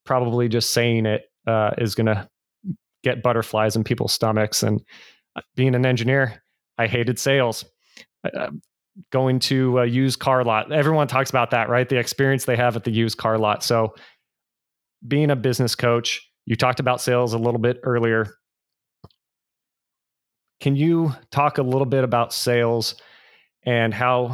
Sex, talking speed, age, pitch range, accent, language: male, 155 wpm, 30-49, 110-130 Hz, American, English